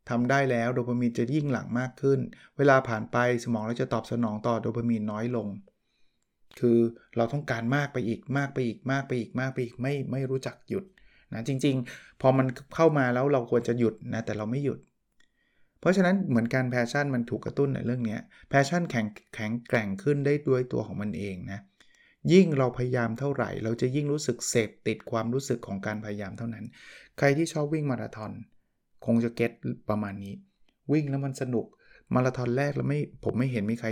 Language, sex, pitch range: Thai, male, 115-140 Hz